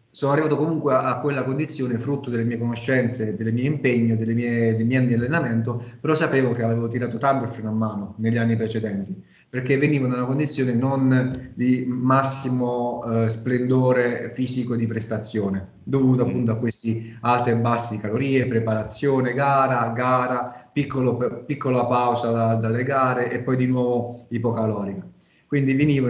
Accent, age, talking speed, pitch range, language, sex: native, 30-49, 155 wpm, 115-130 Hz, Italian, male